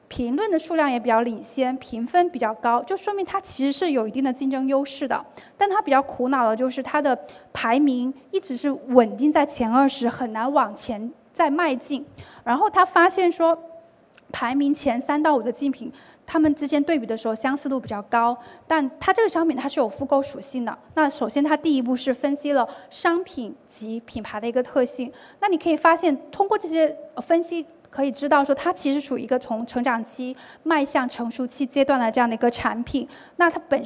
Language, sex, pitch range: Chinese, female, 245-300 Hz